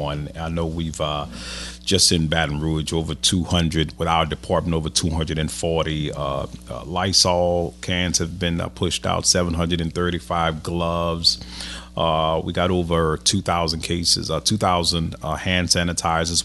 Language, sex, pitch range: English, male, 80-90 Hz